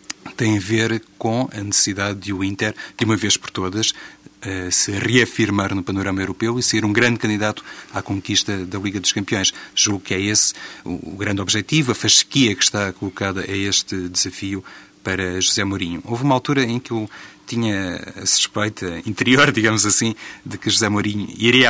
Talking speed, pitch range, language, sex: 180 wpm, 95-110 Hz, Portuguese, male